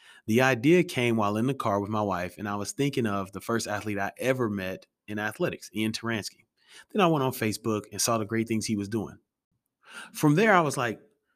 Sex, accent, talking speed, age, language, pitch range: male, American, 225 wpm, 30-49, English, 105-130 Hz